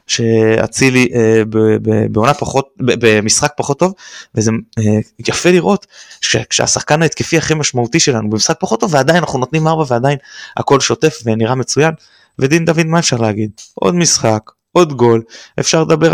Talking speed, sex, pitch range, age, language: 155 wpm, male, 115-155 Hz, 20-39, Hebrew